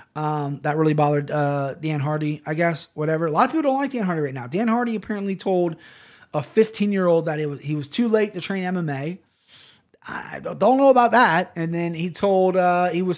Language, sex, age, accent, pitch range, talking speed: English, male, 30-49, American, 155-210 Hz, 220 wpm